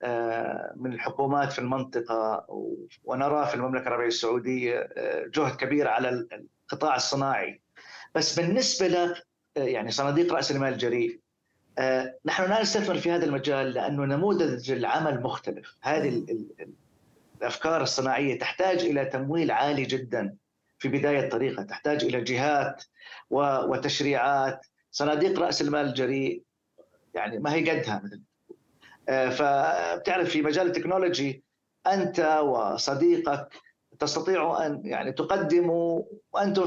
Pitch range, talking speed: 130-175 Hz, 110 wpm